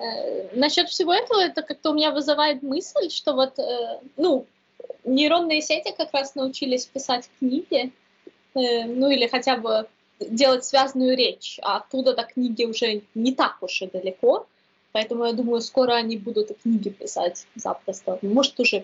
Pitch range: 230-275 Hz